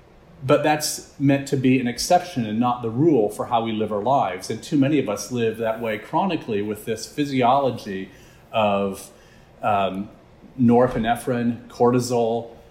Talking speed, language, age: 155 wpm, English, 40-59